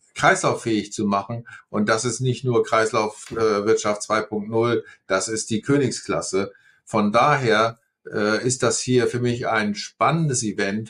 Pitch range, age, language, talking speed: 110-130 Hz, 50-69, German, 130 wpm